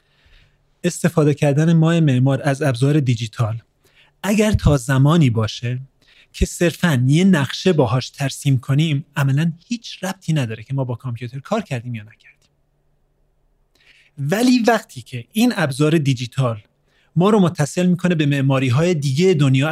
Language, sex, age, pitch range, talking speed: Persian, male, 30-49, 135-185 Hz, 135 wpm